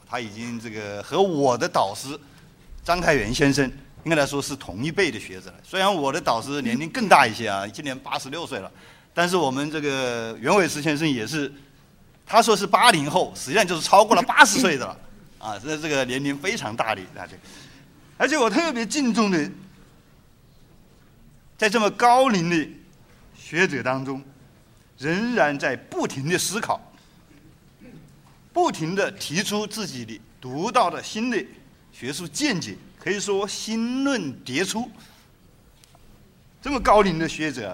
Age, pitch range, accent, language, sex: 50-69, 135-215 Hz, native, Chinese, male